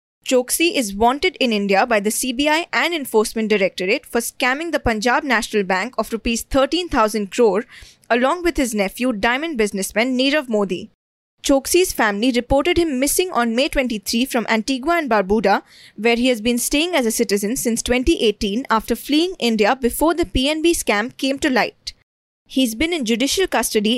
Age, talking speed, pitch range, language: 20-39, 165 wpm, 220-290 Hz, English